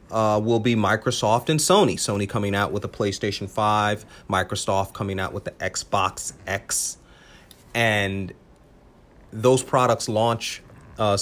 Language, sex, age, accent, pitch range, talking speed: English, male, 30-49, American, 100-125 Hz, 135 wpm